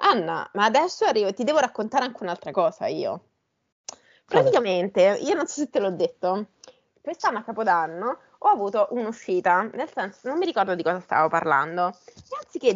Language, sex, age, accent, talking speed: Italian, female, 20-39, native, 175 wpm